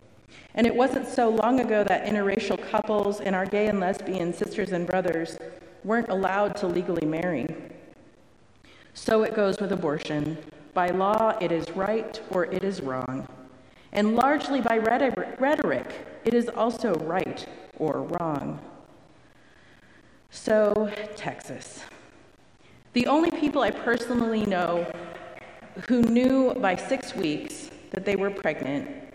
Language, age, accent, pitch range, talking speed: English, 50-69, American, 190-245 Hz, 130 wpm